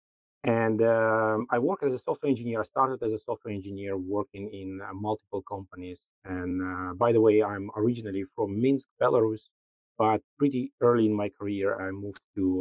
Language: English